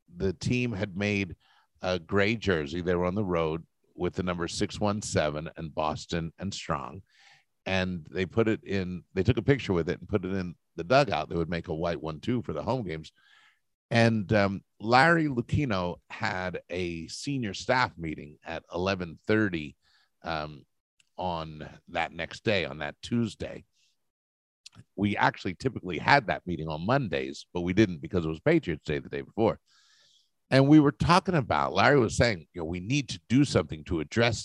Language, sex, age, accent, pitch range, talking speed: English, male, 50-69, American, 85-115 Hz, 180 wpm